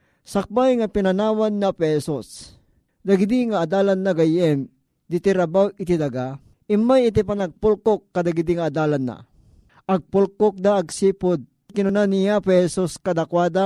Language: Filipino